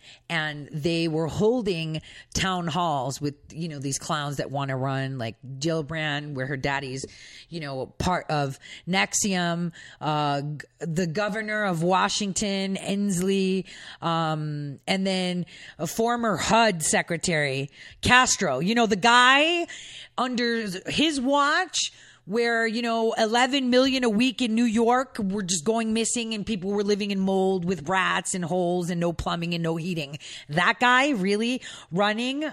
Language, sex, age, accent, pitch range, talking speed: English, female, 30-49, American, 155-225 Hz, 150 wpm